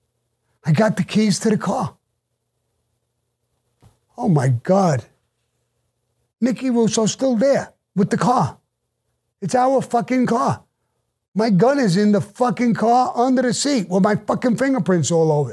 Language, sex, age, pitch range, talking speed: English, male, 50-69, 150-220 Hz, 145 wpm